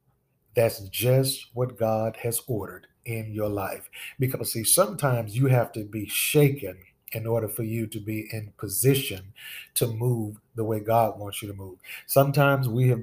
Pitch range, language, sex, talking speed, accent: 105-130 Hz, English, male, 170 wpm, American